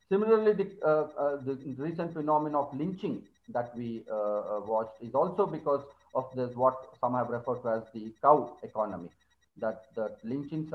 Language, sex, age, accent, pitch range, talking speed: English, male, 40-59, Indian, 120-155 Hz, 165 wpm